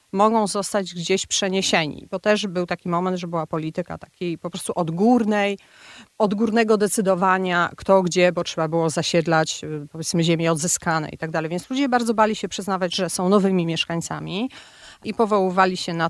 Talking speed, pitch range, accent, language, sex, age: 165 wpm, 170-210 Hz, native, Polish, female, 40-59